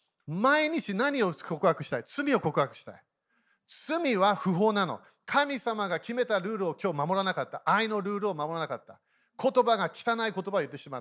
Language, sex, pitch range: Japanese, male, 165-235 Hz